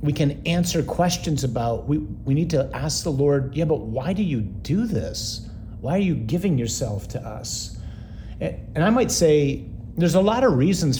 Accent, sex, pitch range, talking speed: American, male, 110-155 Hz, 190 wpm